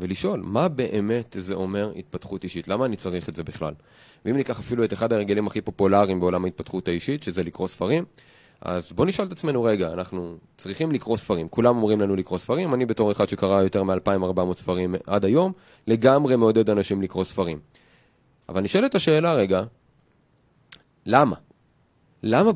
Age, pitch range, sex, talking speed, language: 30-49, 100-150 Hz, male, 165 wpm, Hebrew